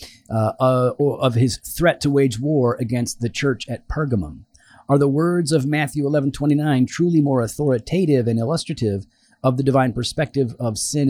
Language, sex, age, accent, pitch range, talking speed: English, male, 40-59, American, 115-150 Hz, 170 wpm